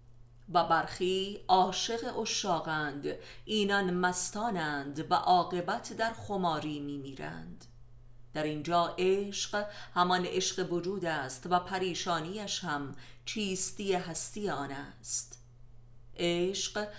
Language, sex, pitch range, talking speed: Persian, female, 140-185 Hz, 100 wpm